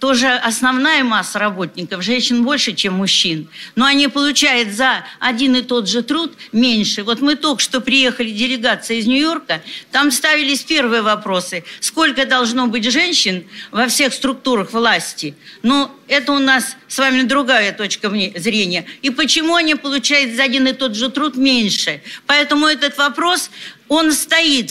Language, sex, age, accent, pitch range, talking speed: Russian, female, 50-69, American, 195-275 Hz, 155 wpm